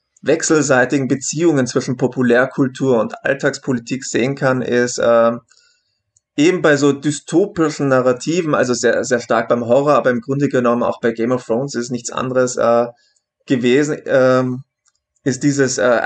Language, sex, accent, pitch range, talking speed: German, male, German, 125-145 Hz, 145 wpm